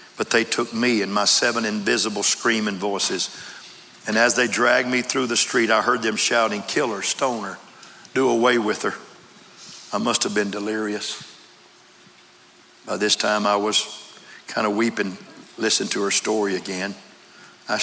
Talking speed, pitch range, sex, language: 165 wpm, 110-140 Hz, male, English